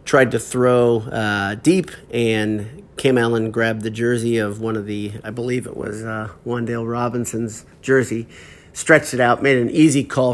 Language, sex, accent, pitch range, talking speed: English, male, American, 105-125 Hz, 175 wpm